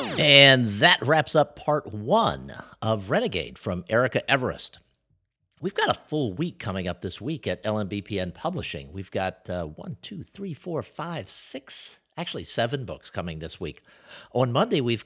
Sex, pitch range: male, 105-150 Hz